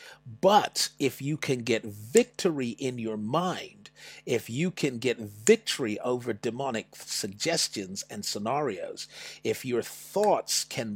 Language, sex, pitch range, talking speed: English, male, 115-170 Hz, 125 wpm